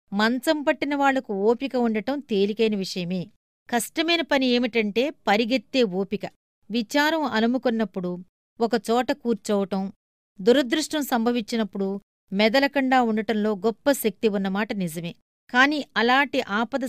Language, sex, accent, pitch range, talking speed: Telugu, female, native, 205-260 Hz, 85 wpm